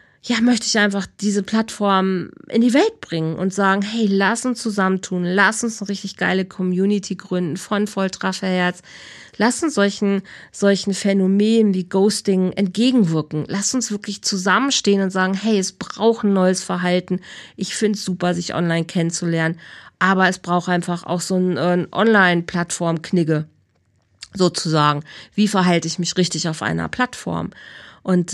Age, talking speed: 40-59, 150 wpm